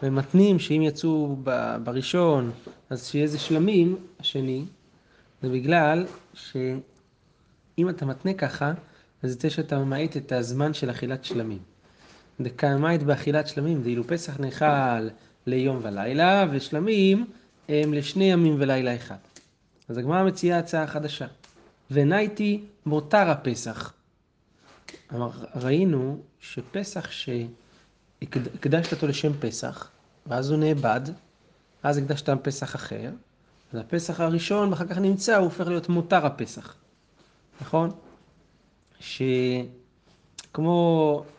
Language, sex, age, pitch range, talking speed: Hebrew, male, 30-49, 130-165 Hz, 110 wpm